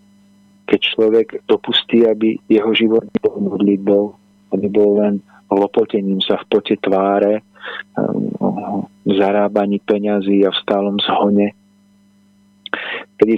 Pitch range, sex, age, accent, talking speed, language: 100-110 Hz, male, 40-59, native, 105 wpm, Czech